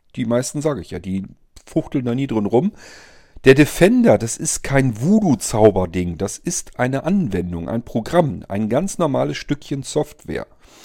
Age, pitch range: 40-59, 120-165 Hz